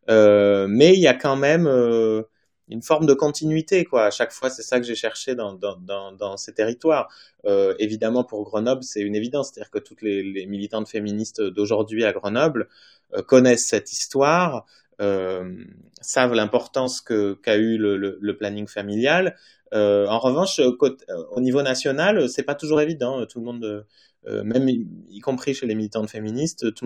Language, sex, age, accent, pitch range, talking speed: French, male, 20-39, French, 105-130 Hz, 185 wpm